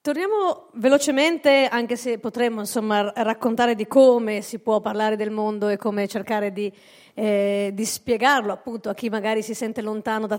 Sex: female